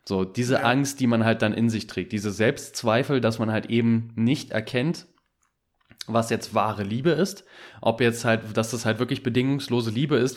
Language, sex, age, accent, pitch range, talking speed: German, male, 20-39, German, 110-125 Hz, 190 wpm